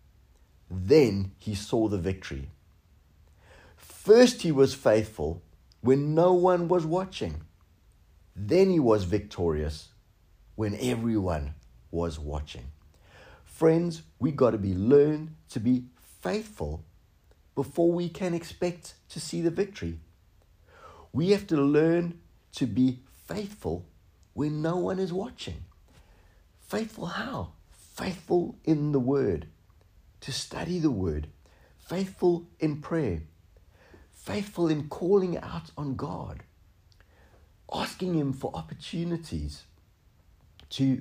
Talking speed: 110 wpm